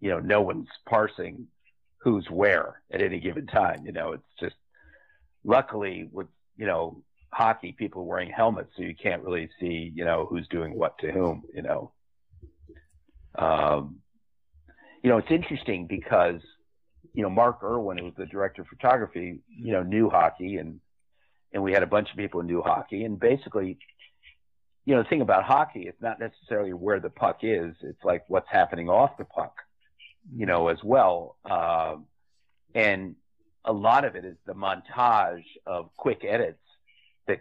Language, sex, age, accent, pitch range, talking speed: English, male, 50-69, American, 80-105 Hz, 175 wpm